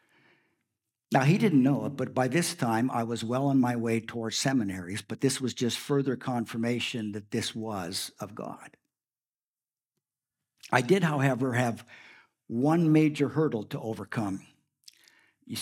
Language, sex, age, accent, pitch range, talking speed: English, male, 60-79, American, 115-135 Hz, 145 wpm